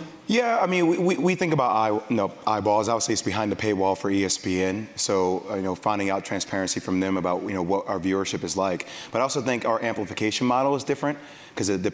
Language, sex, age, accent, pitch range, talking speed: English, male, 30-49, American, 105-125 Hz, 225 wpm